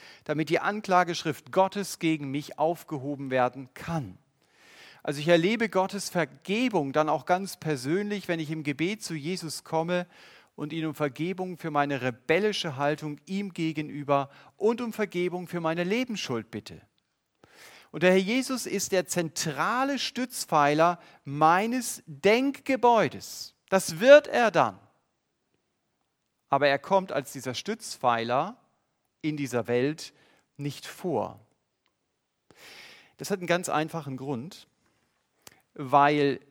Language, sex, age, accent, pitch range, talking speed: German, male, 40-59, German, 135-190 Hz, 120 wpm